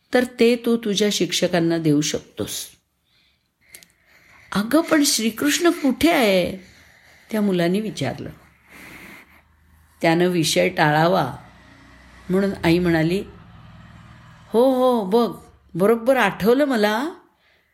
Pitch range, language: 165-240 Hz, Marathi